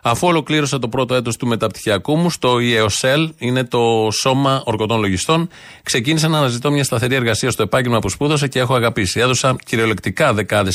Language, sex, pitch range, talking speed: Greek, male, 115-145 Hz, 175 wpm